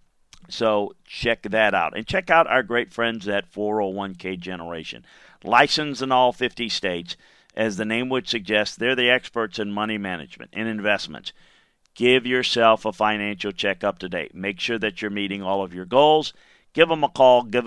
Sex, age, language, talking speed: male, 50-69, English, 175 wpm